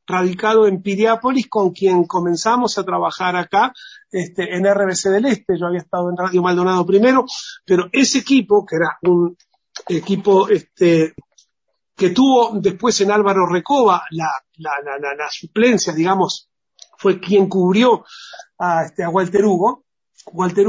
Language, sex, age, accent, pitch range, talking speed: Spanish, male, 40-59, Argentinian, 180-220 Hz, 150 wpm